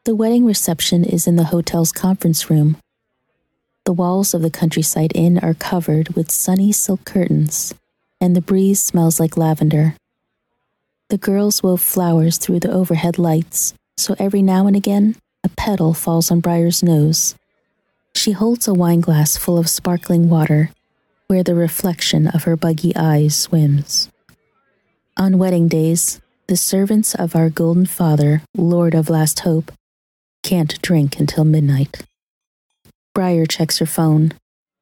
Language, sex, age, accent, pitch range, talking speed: English, female, 30-49, American, 160-185 Hz, 145 wpm